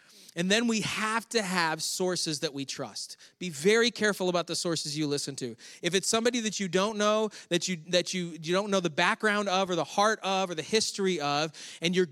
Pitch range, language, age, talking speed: 145-200 Hz, English, 30-49, 230 wpm